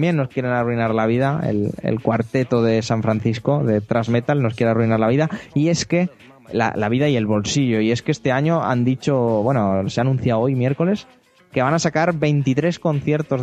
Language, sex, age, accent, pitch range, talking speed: Spanish, male, 20-39, Spanish, 110-135 Hz, 205 wpm